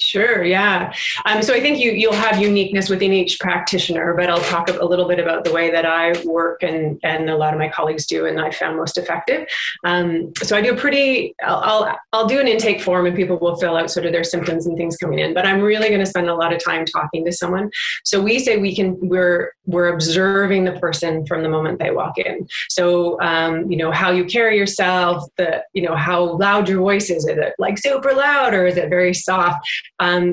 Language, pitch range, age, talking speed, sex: English, 170-200 Hz, 30-49, 235 wpm, female